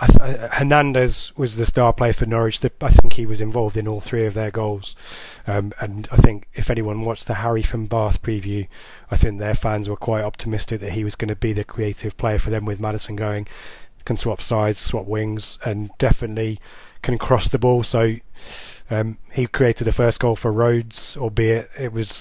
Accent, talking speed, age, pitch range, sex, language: British, 200 wpm, 20-39, 110-125 Hz, male, English